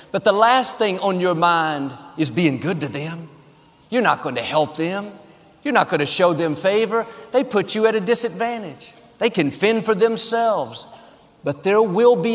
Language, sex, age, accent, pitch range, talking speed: English, male, 50-69, American, 165-215 Hz, 195 wpm